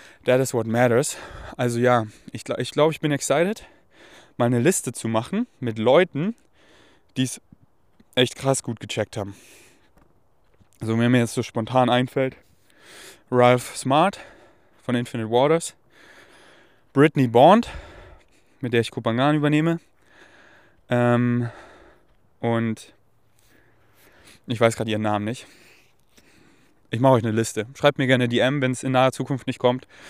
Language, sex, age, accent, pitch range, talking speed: German, male, 20-39, German, 115-135 Hz, 140 wpm